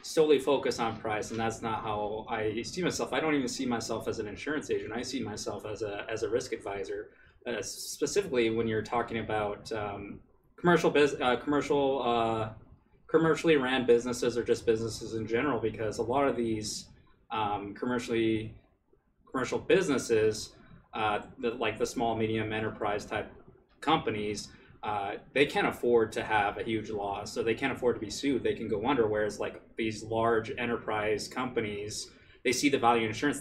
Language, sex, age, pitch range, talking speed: English, male, 20-39, 110-130 Hz, 180 wpm